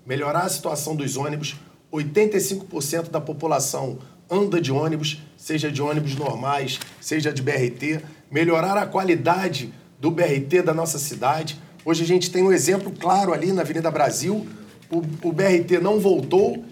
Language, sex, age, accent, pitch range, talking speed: Portuguese, male, 40-59, Brazilian, 150-180 Hz, 150 wpm